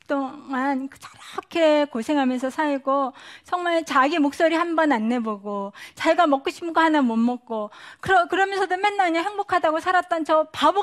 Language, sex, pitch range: Korean, female, 225-305 Hz